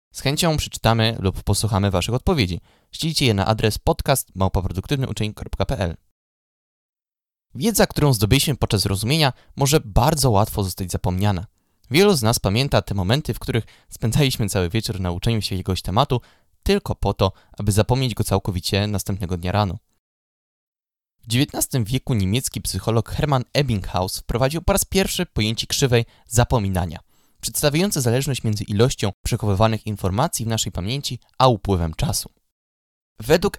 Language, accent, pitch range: Polish, native, 95-130 Hz